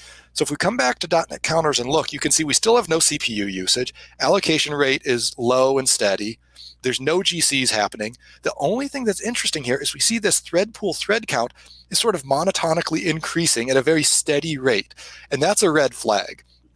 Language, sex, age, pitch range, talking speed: English, male, 30-49, 125-170 Hz, 210 wpm